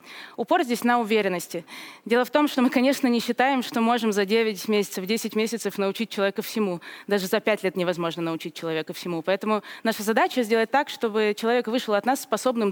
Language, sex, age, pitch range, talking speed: Russian, female, 20-39, 200-250 Hz, 195 wpm